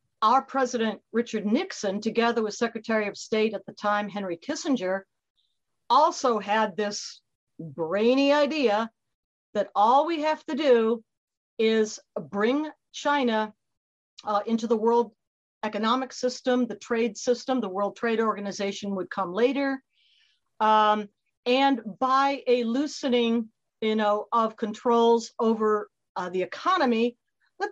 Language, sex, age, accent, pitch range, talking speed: English, female, 50-69, American, 210-255 Hz, 120 wpm